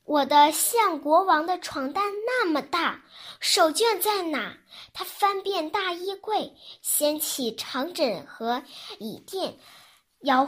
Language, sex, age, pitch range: Chinese, male, 10-29, 270-385 Hz